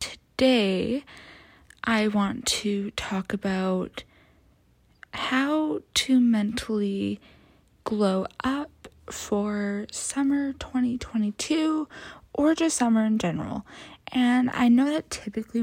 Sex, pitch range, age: female, 190-260 Hz, 20-39